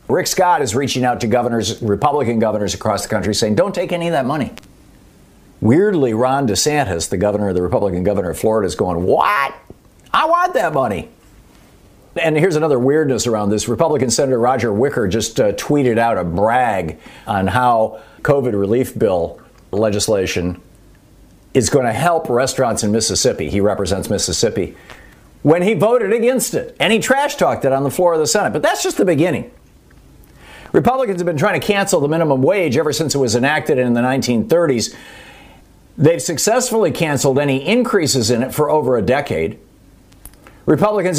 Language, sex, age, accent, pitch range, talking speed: English, male, 50-69, American, 110-165 Hz, 175 wpm